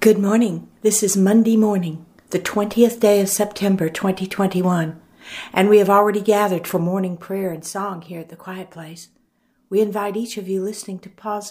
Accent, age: American, 60-79